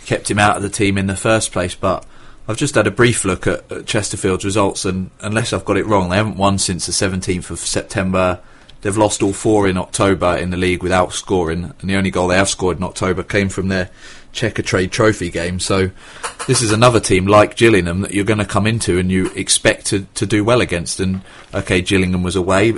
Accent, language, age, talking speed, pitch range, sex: British, English, 30-49, 230 wpm, 95-110 Hz, male